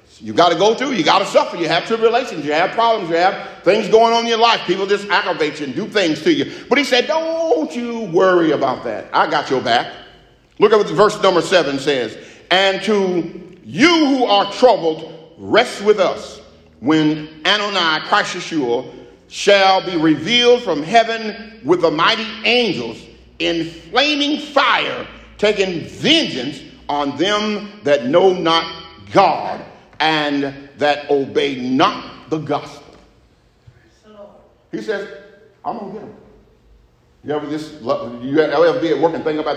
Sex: male